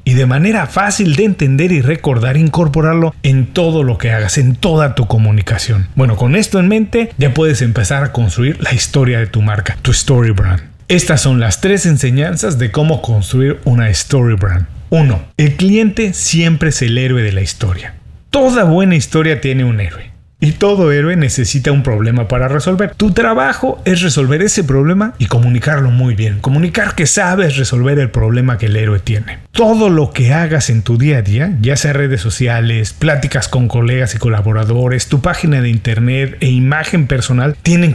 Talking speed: 185 wpm